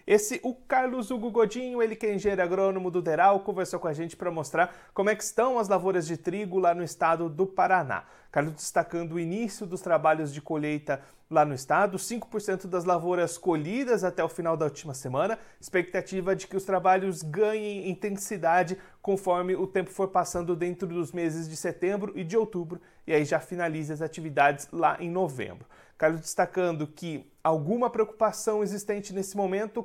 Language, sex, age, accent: Portuguese, male, 30-49, Brazilian